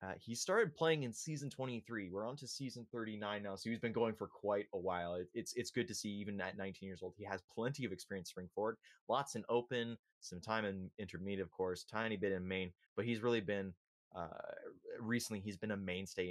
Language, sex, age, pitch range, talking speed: English, male, 20-39, 95-115 Hz, 230 wpm